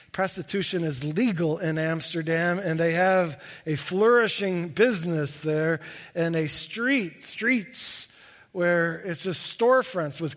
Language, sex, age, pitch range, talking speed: English, male, 50-69, 155-205 Hz, 120 wpm